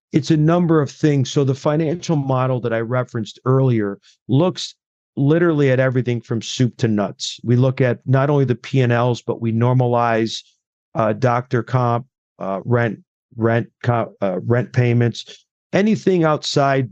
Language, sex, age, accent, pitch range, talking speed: English, male, 50-69, American, 115-135 Hz, 160 wpm